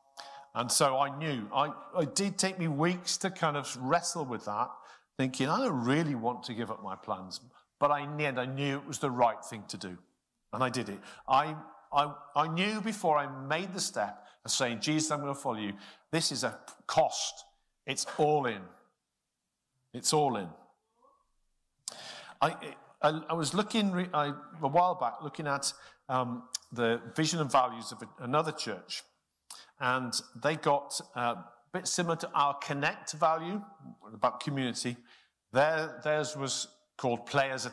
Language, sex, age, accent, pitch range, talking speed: English, male, 50-69, British, 125-160 Hz, 175 wpm